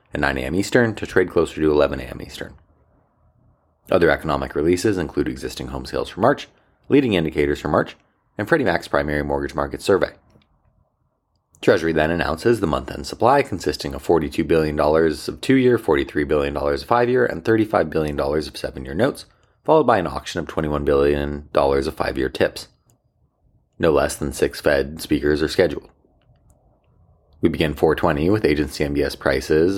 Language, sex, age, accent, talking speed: English, male, 30-49, American, 155 wpm